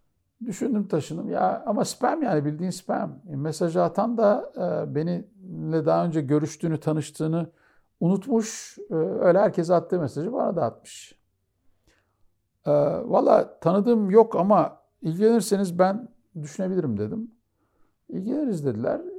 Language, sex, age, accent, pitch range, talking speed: Turkish, male, 60-79, native, 120-175 Hz, 115 wpm